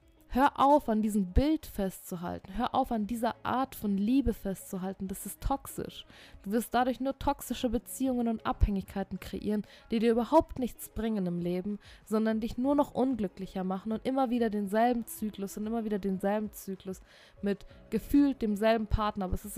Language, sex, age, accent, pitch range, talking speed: German, female, 20-39, German, 195-245 Hz, 170 wpm